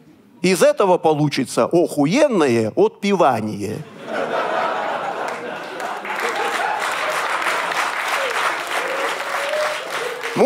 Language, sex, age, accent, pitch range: Russian, male, 40-59, native, 165-255 Hz